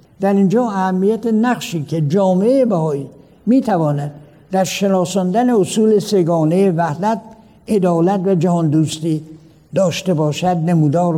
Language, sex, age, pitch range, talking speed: Persian, male, 60-79, 160-200 Hz, 105 wpm